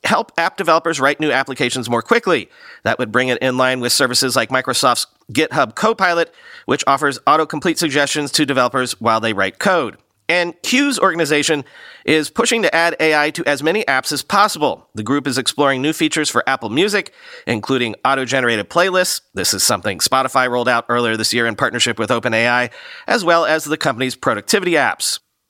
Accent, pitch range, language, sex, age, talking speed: American, 125-170 Hz, English, male, 40-59, 180 wpm